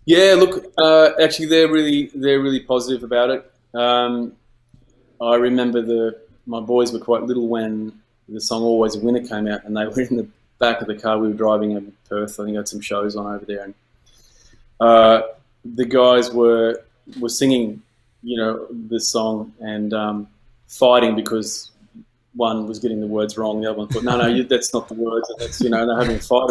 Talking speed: 210 wpm